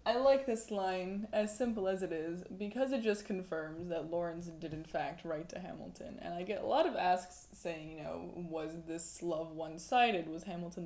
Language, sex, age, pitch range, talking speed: English, female, 20-39, 165-195 Hz, 205 wpm